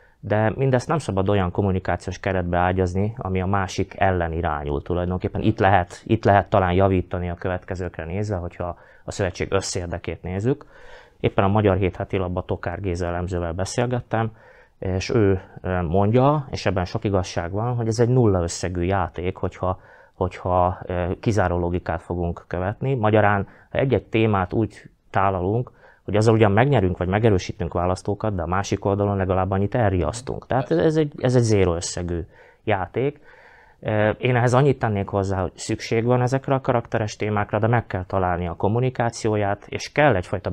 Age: 30-49